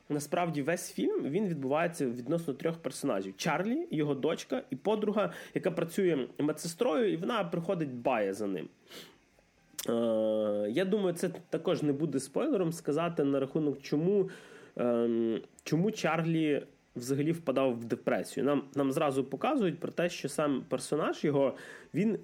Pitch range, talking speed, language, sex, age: 125-175 Hz, 140 wpm, Ukrainian, male, 20-39